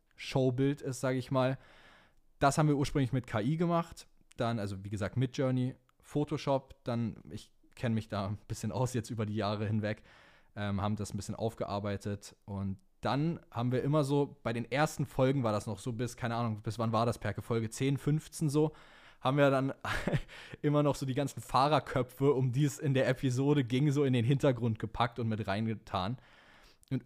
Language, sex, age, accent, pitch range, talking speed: German, male, 20-39, German, 105-135 Hz, 195 wpm